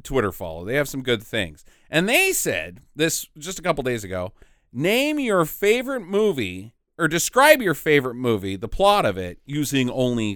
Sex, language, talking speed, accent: male, English, 180 wpm, American